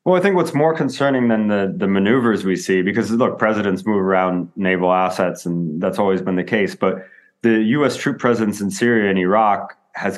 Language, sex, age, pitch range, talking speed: English, male, 30-49, 90-115 Hz, 205 wpm